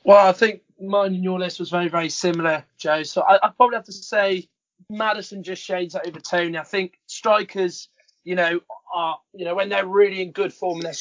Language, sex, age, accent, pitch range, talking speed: English, male, 20-39, British, 170-200 Hz, 220 wpm